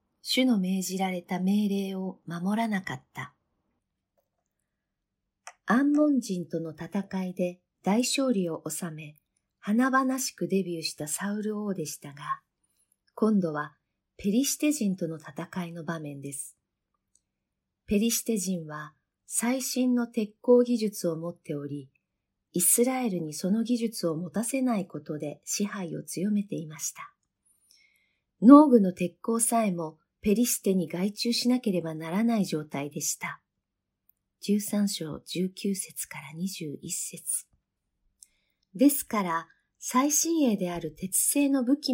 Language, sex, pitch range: Japanese, female, 165-230 Hz